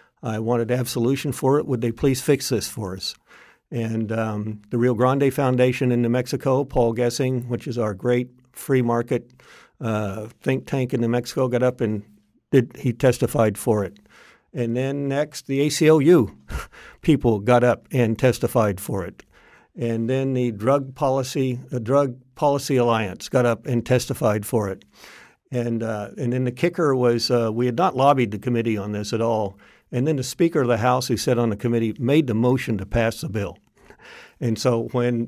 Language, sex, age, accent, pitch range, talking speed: English, male, 50-69, American, 115-135 Hz, 190 wpm